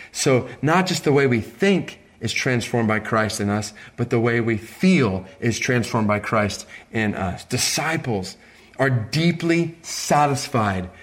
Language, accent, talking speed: English, American, 150 wpm